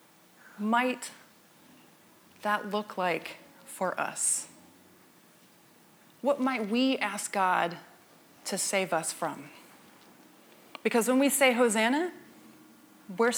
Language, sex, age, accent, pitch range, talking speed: English, female, 30-49, American, 200-255 Hz, 95 wpm